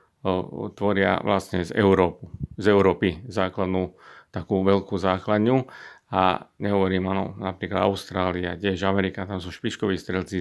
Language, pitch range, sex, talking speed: Slovak, 95-110 Hz, male, 120 wpm